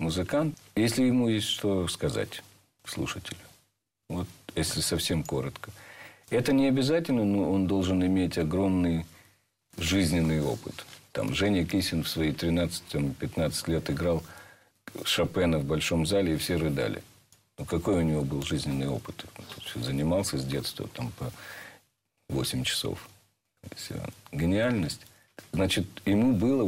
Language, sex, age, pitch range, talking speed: Russian, male, 50-69, 80-115 Hz, 125 wpm